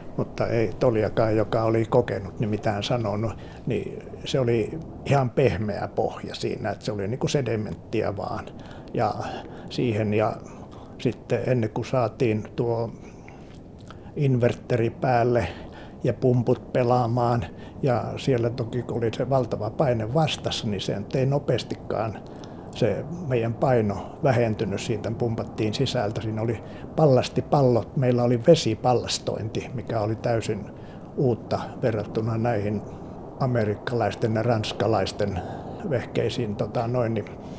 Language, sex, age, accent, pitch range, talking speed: Finnish, male, 60-79, native, 110-130 Hz, 115 wpm